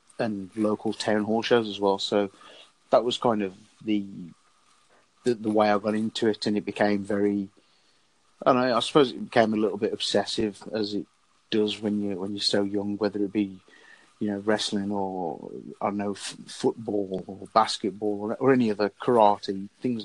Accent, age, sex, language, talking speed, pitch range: British, 30-49, male, English, 190 wpm, 100-105 Hz